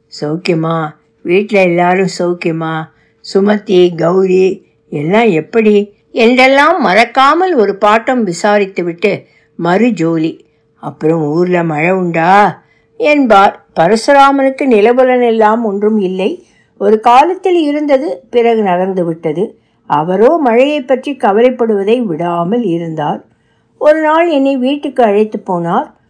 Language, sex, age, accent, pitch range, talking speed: Tamil, female, 60-79, native, 185-260 Hz, 85 wpm